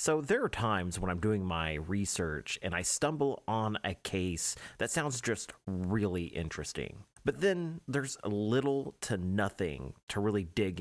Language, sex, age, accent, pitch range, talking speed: English, male, 30-49, American, 95-125 Hz, 160 wpm